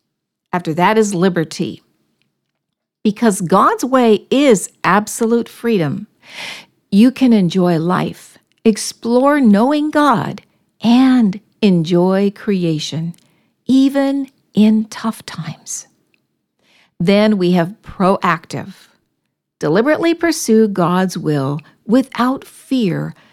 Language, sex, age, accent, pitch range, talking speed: English, female, 60-79, American, 175-235 Hz, 85 wpm